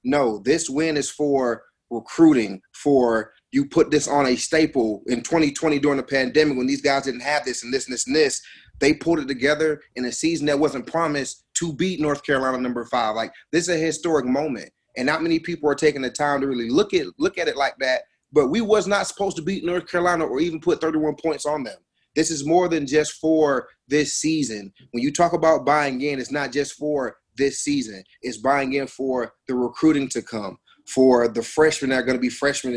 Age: 30-49